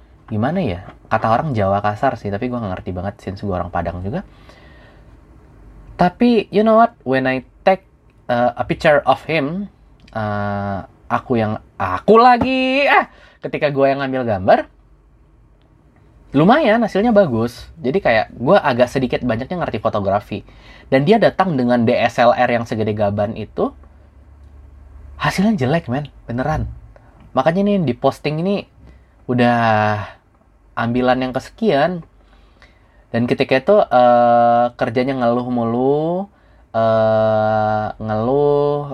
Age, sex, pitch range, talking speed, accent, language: 20-39, male, 105-140 Hz, 125 wpm, native, Indonesian